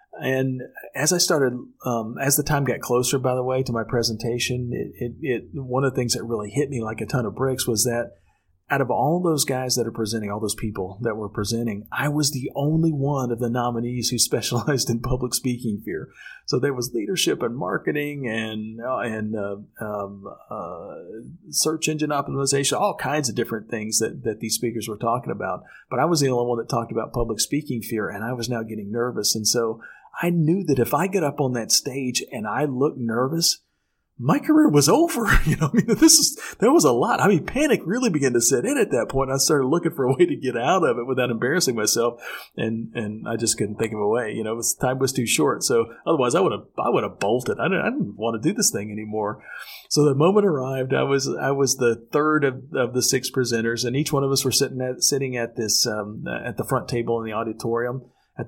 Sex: male